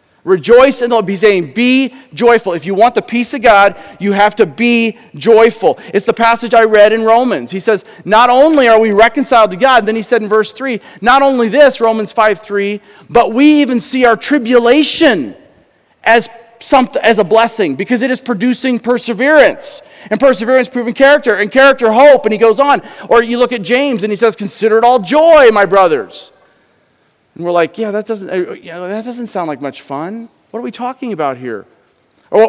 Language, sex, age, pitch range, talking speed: English, male, 40-59, 215-260 Hz, 200 wpm